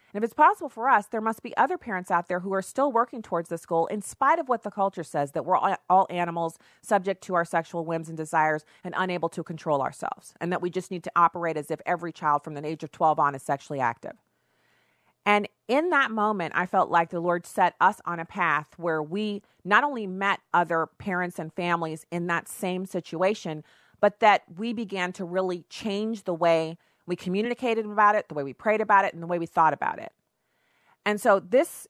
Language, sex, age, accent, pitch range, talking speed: English, female, 40-59, American, 170-210 Hz, 225 wpm